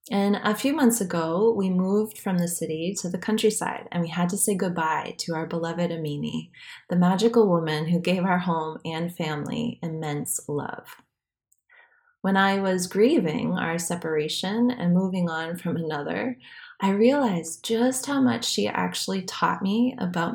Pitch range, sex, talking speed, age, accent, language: 170-235 Hz, female, 160 wpm, 20-39, American, English